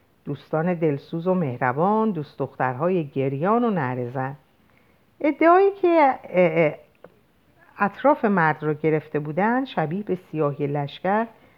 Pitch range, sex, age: 145-235 Hz, female, 50-69